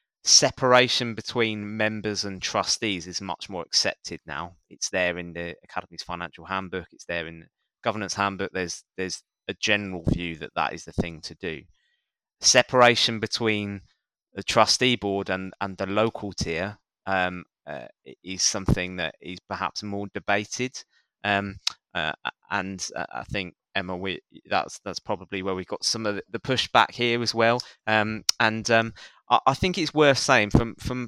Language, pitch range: English, 95-115 Hz